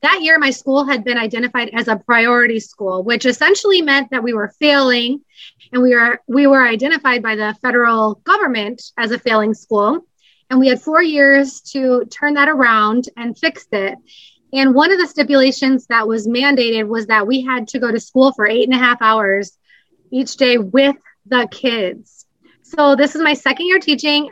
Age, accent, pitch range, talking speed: 20-39, American, 240-280 Hz, 190 wpm